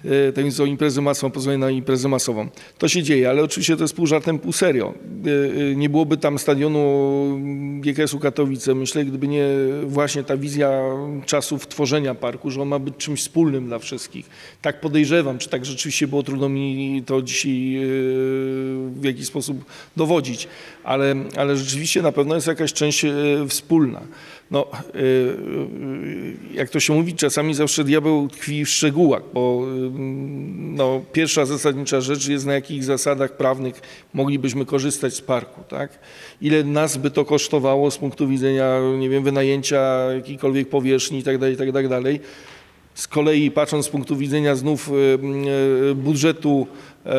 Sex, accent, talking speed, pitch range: male, native, 145 wpm, 135-150 Hz